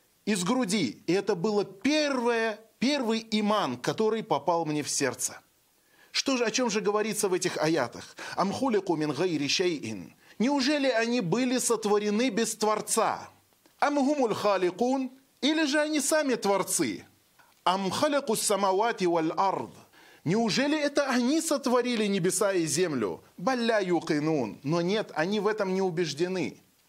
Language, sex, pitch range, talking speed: Russian, male, 175-245 Hz, 135 wpm